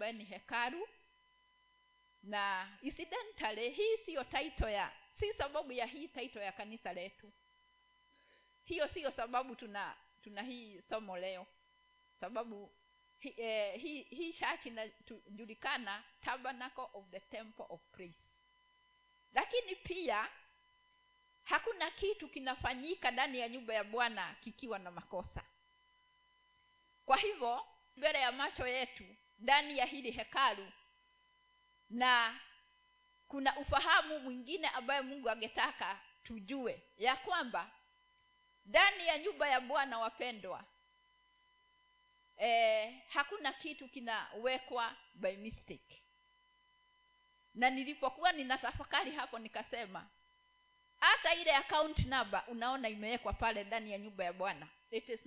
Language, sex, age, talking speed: Swahili, female, 50-69, 110 wpm